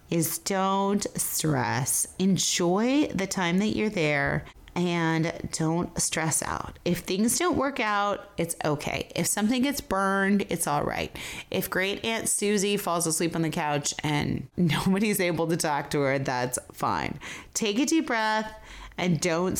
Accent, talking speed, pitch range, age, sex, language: American, 155 wpm, 155-205 Hz, 30-49, female, English